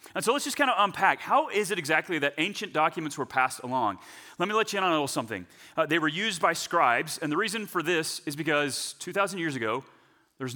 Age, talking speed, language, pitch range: 30-49, 250 wpm, English, 165-230 Hz